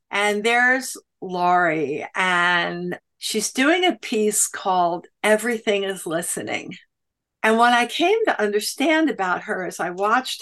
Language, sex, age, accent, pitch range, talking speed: English, female, 60-79, American, 185-240 Hz, 130 wpm